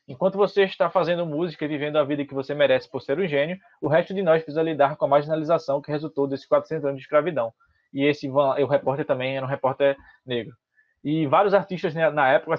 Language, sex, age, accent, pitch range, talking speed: Portuguese, male, 20-39, Brazilian, 145-180 Hz, 225 wpm